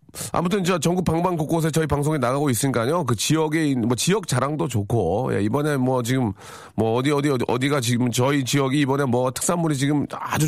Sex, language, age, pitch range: male, Korean, 40-59, 110-155 Hz